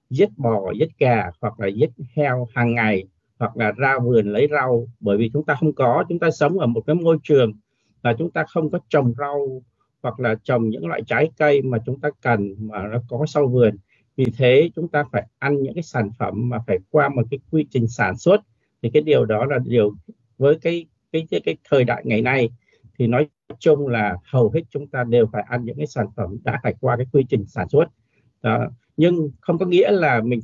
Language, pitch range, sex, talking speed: Vietnamese, 115-155 Hz, male, 230 wpm